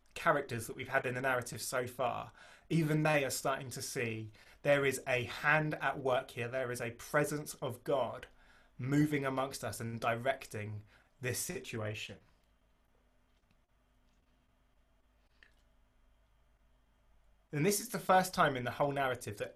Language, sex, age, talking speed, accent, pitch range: English, male, 20-39, 140 wpm, British, 120-160 Hz